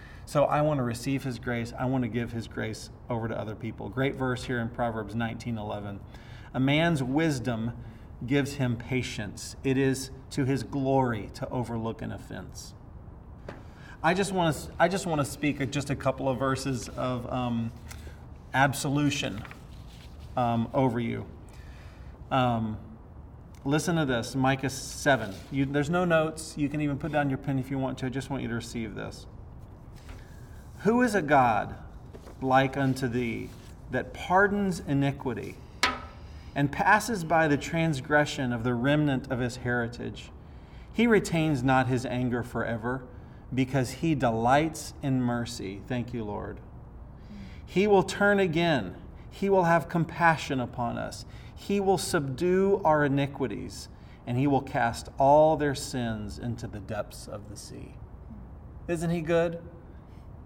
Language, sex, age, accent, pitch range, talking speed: English, male, 40-59, American, 115-145 Hz, 150 wpm